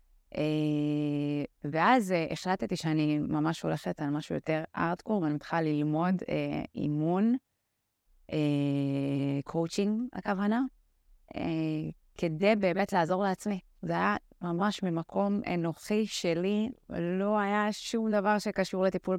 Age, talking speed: 20-39, 100 wpm